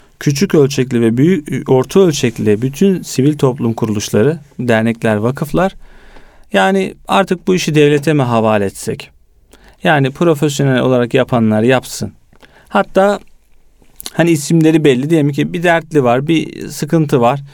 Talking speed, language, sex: 125 wpm, Turkish, male